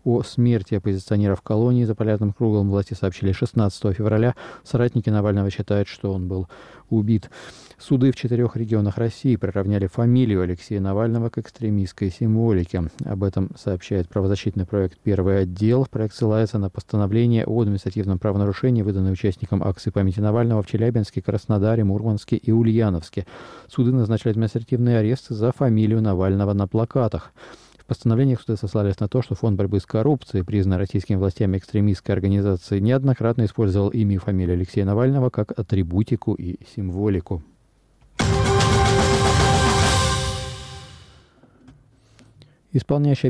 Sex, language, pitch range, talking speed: male, Russian, 100-120 Hz, 130 wpm